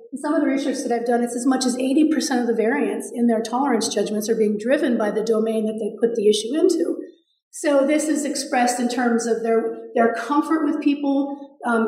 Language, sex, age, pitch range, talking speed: English, female, 40-59, 225-260 Hz, 225 wpm